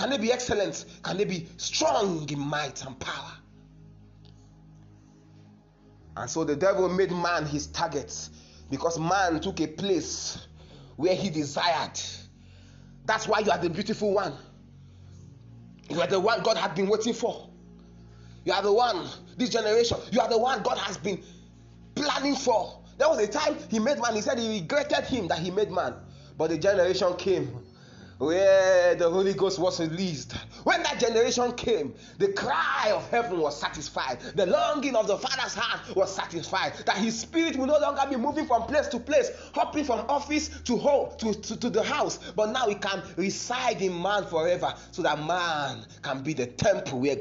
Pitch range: 155-235 Hz